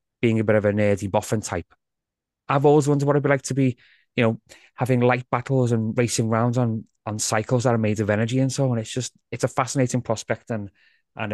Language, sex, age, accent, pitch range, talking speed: English, male, 20-39, British, 105-125 Hz, 235 wpm